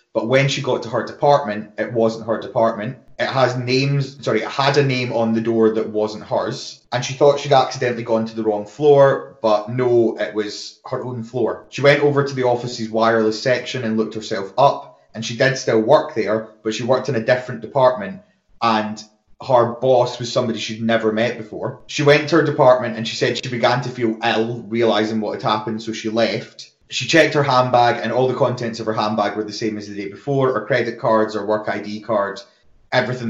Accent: British